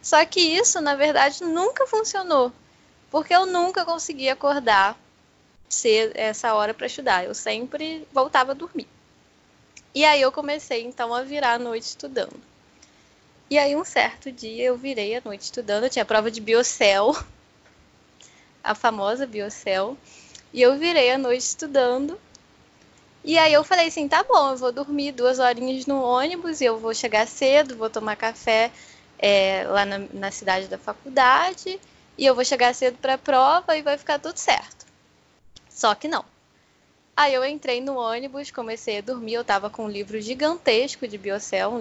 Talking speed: 170 wpm